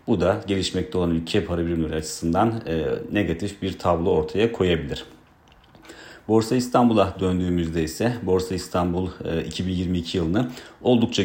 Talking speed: 115 wpm